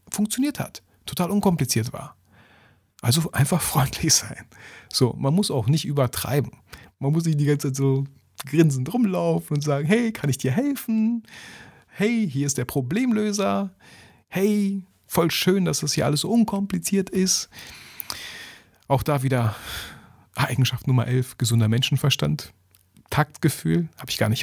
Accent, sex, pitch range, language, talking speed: German, male, 110-150 Hz, German, 145 wpm